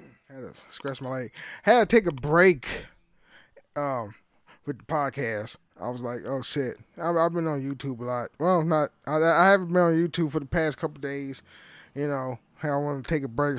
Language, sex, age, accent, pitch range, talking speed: English, male, 10-29, American, 140-200 Hz, 210 wpm